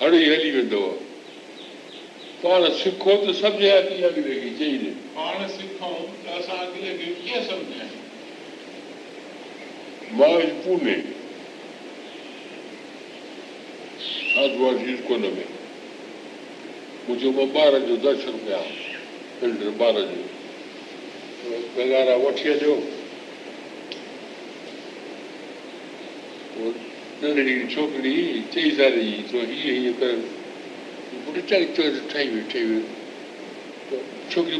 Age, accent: 60-79, American